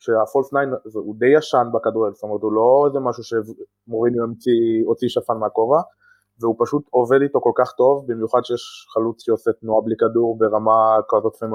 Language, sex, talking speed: Hebrew, male, 160 wpm